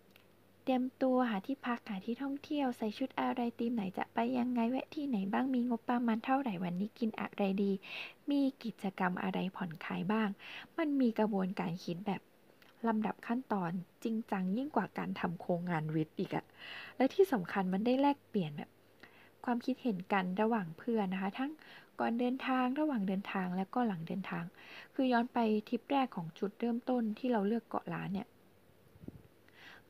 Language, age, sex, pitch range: Thai, 10-29, female, 195-250 Hz